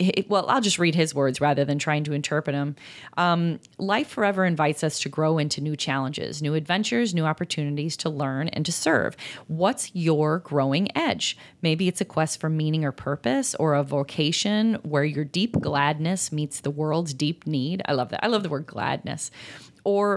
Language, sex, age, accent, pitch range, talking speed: English, female, 30-49, American, 150-190 Hz, 190 wpm